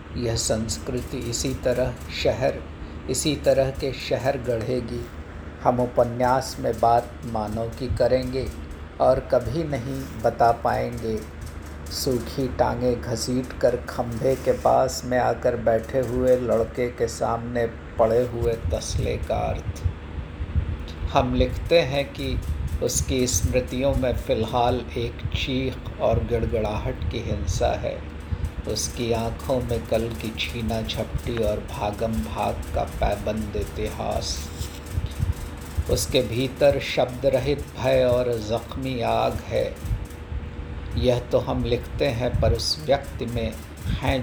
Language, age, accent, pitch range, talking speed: Hindi, 50-69, native, 80-125 Hz, 120 wpm